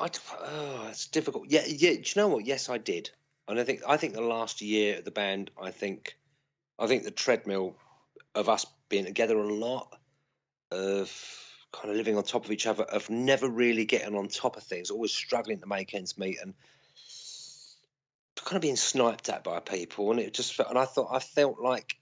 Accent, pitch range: British, 110-145 Hz